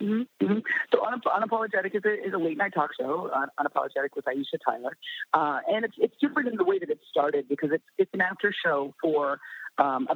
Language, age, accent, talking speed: English, 40-59, American, 205 wpm